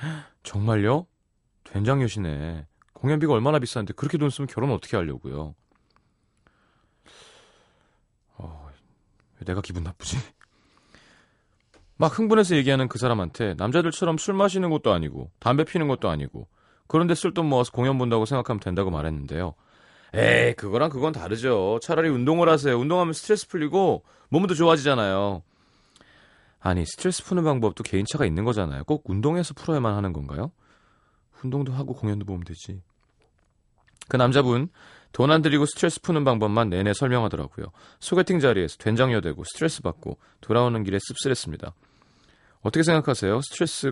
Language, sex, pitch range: Korean, male, 100-150 Hz